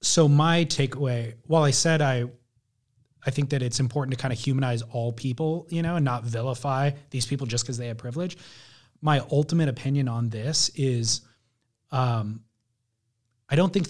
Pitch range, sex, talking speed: 120-155 Hz, male, 175 wpm